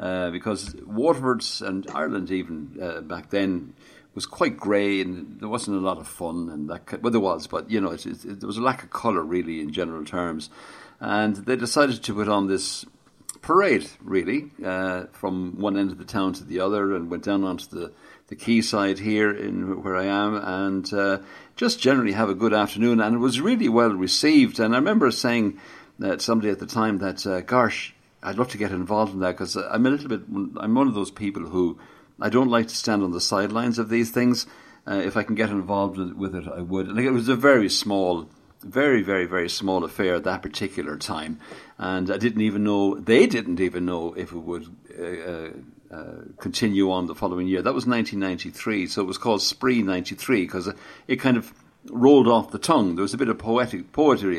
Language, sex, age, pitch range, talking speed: English, male, 60-79, 90-115 Hz, 215 wpm